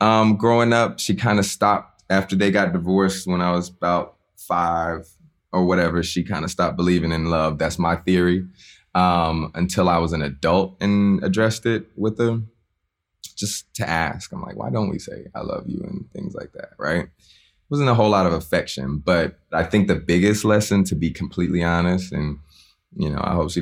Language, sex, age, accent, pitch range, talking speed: English, male, 20-39, American, 80-95 Hz, 200 wpm